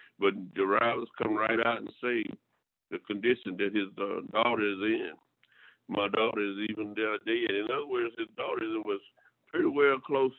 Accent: American